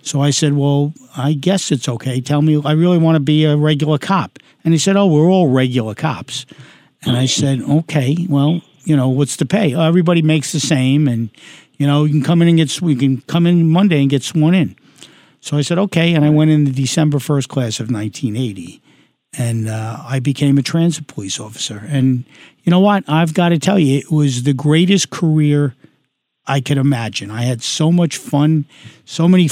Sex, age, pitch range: male, 50-69, 135-160 Hz